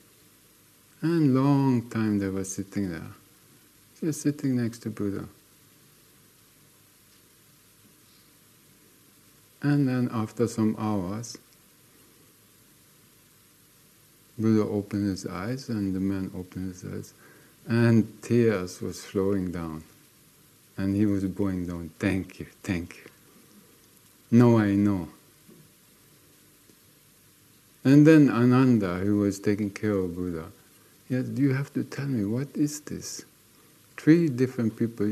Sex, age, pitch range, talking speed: male, 50-69, 100-130 Hz, 110 wpm